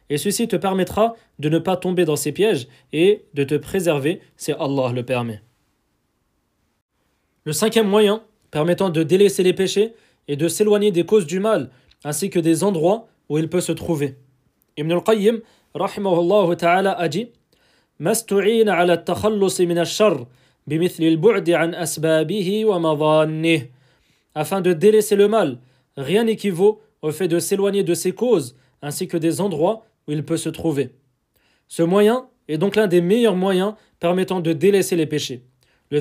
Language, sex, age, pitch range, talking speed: French, male, 20-39, 155-210 Hz, 145 wpm